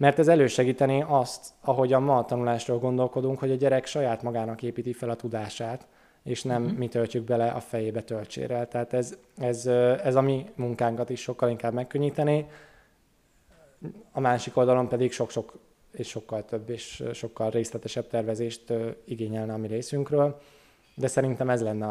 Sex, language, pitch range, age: male, Hungarian, 120-145 Hz, 20-39